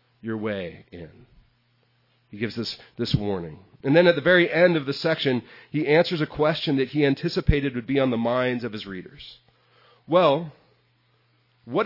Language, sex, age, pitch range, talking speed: English, male, 40-59, 120-155 Hz, 170 wpm